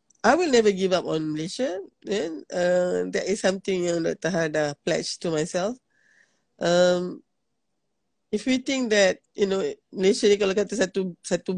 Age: 20-39